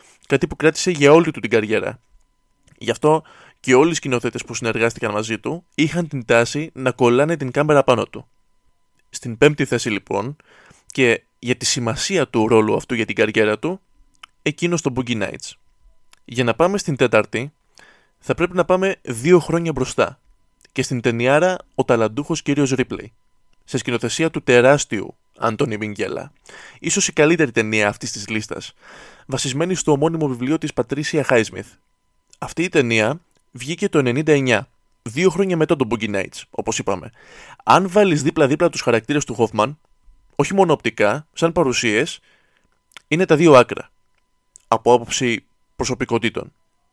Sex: male